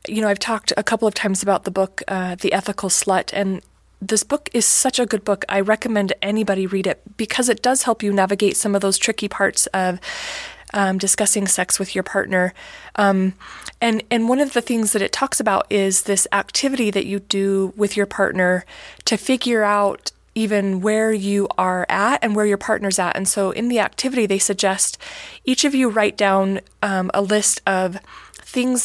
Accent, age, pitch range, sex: American, 20-39, 195-235 Hz, female